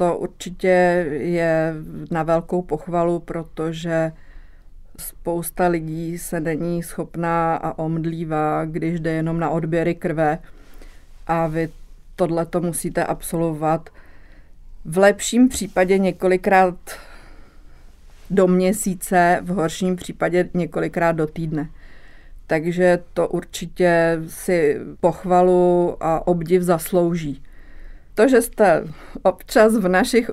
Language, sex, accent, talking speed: Czech, female, native, 100 wpm